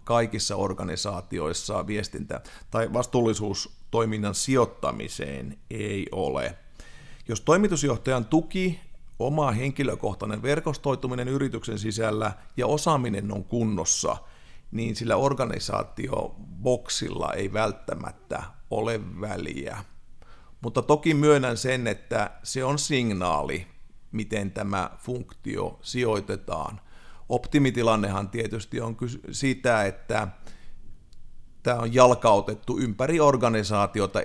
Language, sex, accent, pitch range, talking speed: Finnish, male, native, 100-125 Hz, 85 wpm